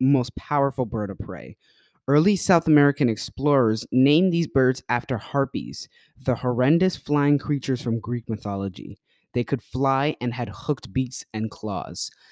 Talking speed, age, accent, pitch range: 145 wpm, 20-39, American, 115-145 Hz